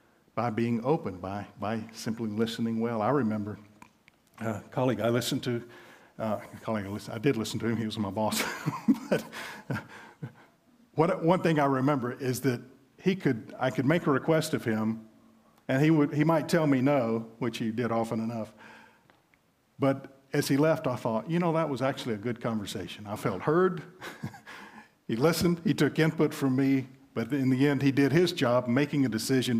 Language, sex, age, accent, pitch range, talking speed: English, male, 50-69, American, 110-140 Hz, 195 wpm